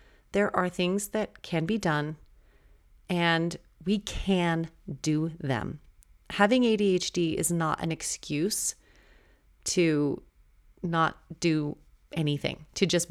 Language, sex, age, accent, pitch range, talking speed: English, female, 30-49, American, 155-185 Hz, 110 wpm